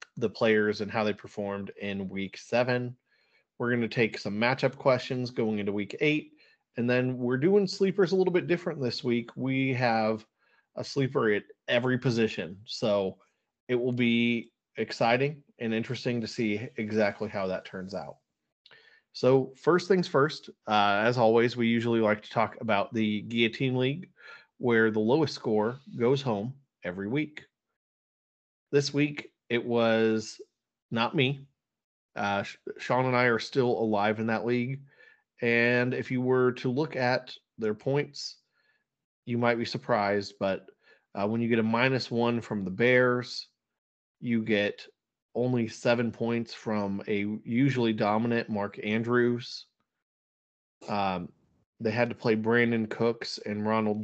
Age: 30-49